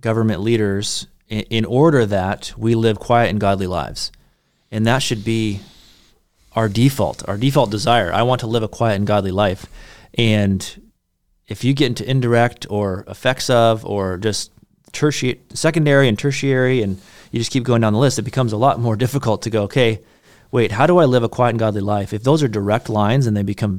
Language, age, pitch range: English, 30-49, 105-125 Hz